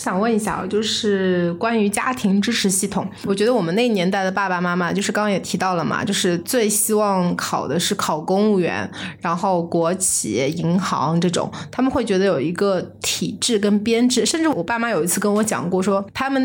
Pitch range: 180-220 Hz